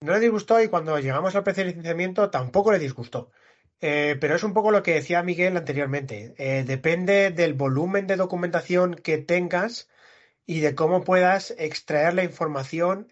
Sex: male